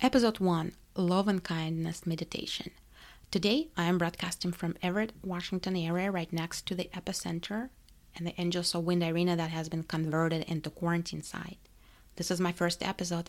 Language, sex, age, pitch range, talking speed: English, female, 30-49, 165-185 Hz, 165 wpm